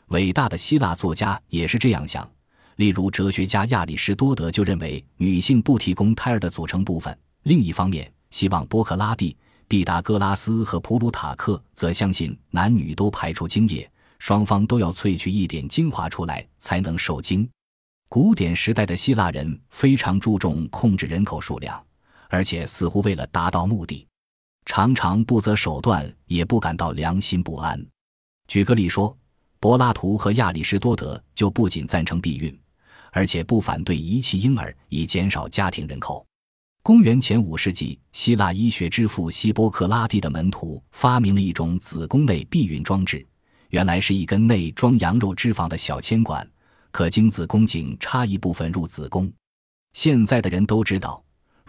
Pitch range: 85-110 Hz